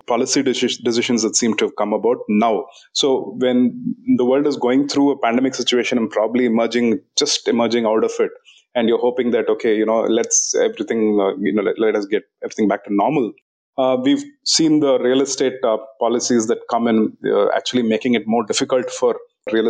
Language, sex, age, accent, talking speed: English, male, 30-49, Indian, 200 wpm